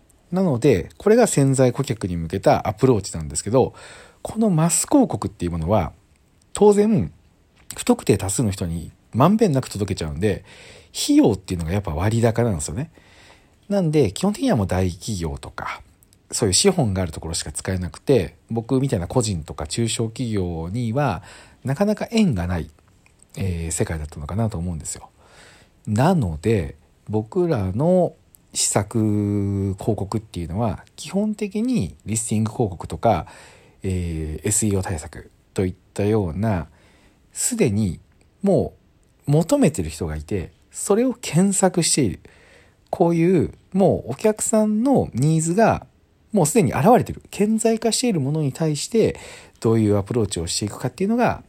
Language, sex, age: Japanese, male, 40-59